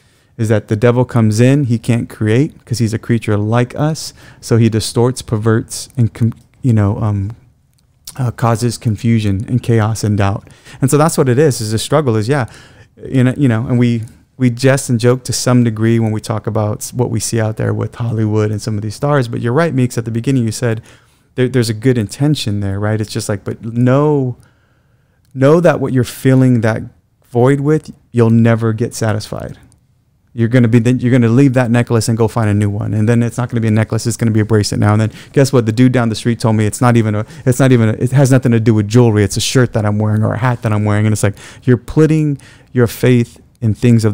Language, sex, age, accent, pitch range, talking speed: English, male, 30-49, American, 110-125 Hz, 240 wpm